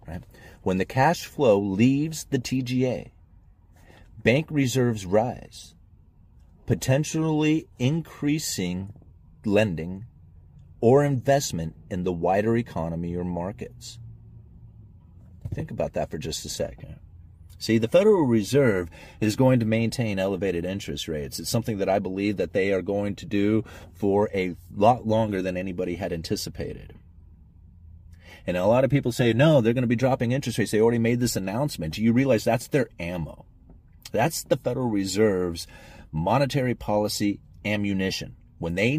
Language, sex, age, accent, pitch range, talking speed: English, male, 40-59, American, 90-115 Hz, 140 wpm